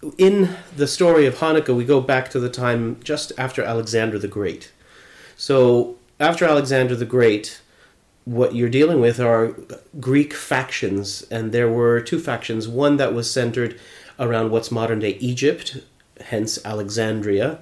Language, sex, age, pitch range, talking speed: English, male, 30-49, 110-130 Hz, 145 wpm